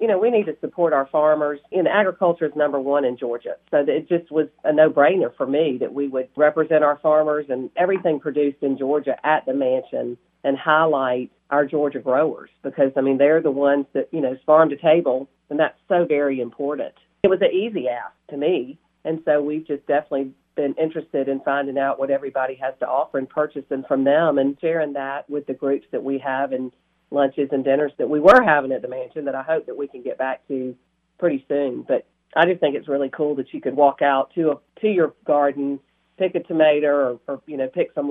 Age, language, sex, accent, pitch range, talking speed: 40-59, English, female, American, 135-160 Hz, 225 wpm